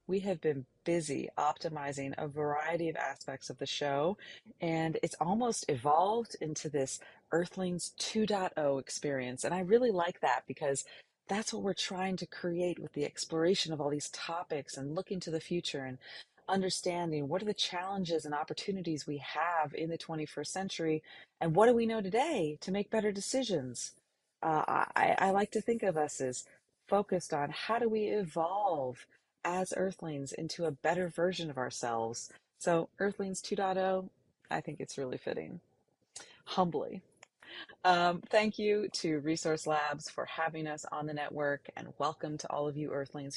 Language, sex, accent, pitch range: English, female, American, 145-185 Hz